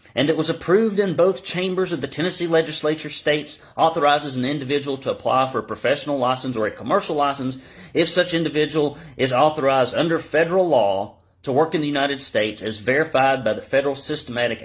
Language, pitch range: English, 105-140 Hz